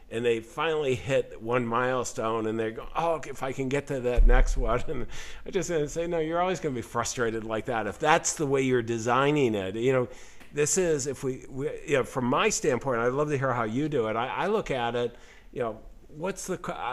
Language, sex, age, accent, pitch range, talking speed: English, male, 50-69, American, 115-145 Hz, 240 wpm